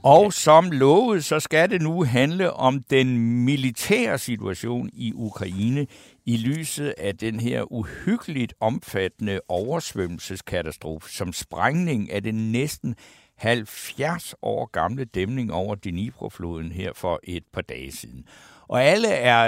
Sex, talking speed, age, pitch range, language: male, 130 wpm, 60-79, 105-140 Hz, Danish